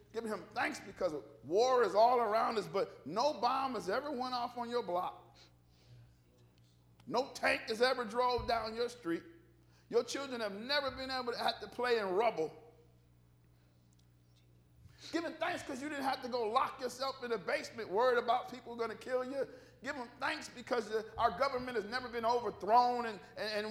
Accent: American